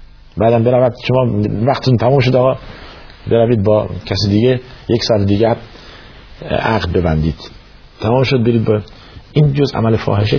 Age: 50-69